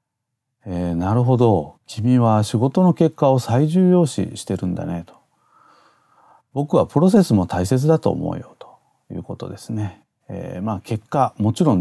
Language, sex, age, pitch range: Japanese, male, 40-59, 100-155 Hz